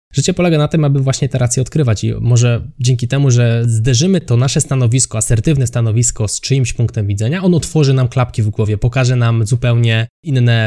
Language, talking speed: Polish, 190 wpm